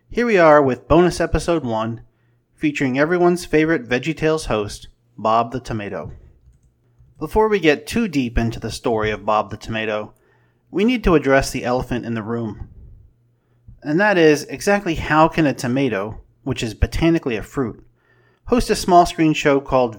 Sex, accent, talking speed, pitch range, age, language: male, American, 165 wpm, 115-155 Hz, 30-49, English